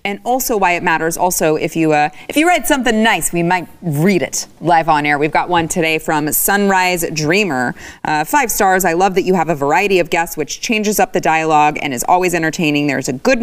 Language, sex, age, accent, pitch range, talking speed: English, female, 30-49, American, 150-190 Hz, 230 wpm